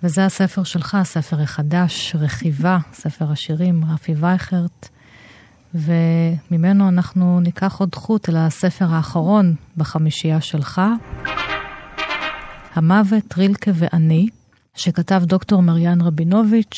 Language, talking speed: Hebrew, 95 wpm